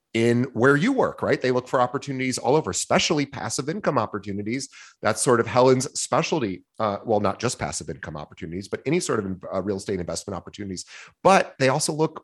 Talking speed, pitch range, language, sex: 195 wpm, 100-130 Hz, English, male